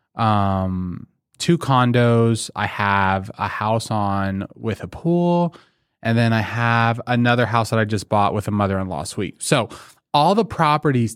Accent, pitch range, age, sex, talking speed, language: American, 110-140 Hz, 20-39, male, 155 wpm, English